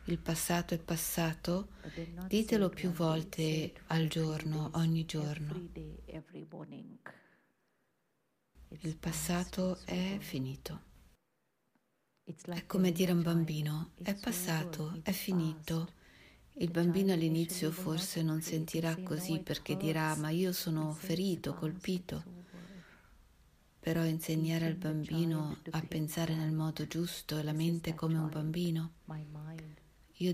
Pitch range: 155-170 Hz